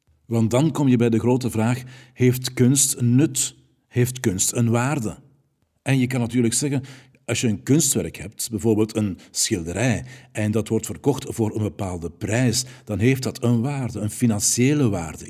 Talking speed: 175 wpm